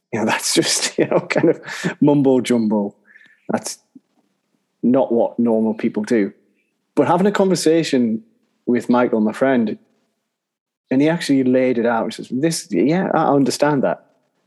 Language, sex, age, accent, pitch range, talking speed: English, male, 30-49, British, 115-140 Hz, 145 wpm